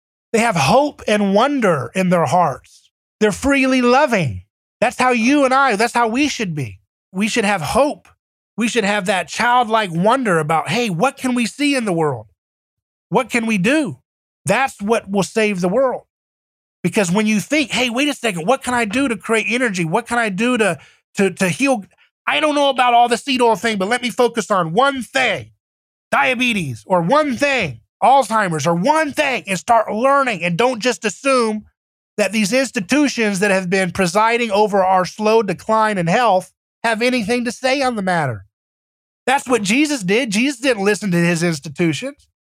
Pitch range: 175-245 Hz